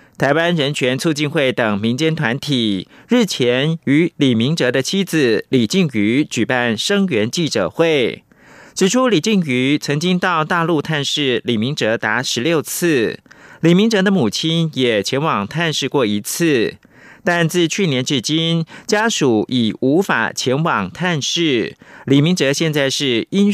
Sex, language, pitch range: male, Chinese, 135-180 Hz